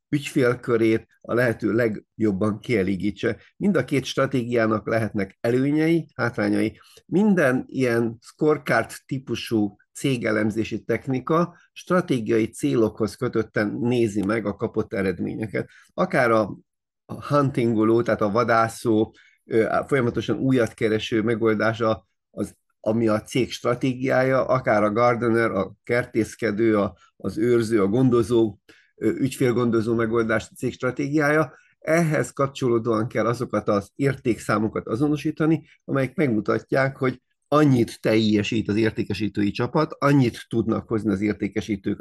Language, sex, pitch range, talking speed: English, male, 110-130 Hz, 105 wpm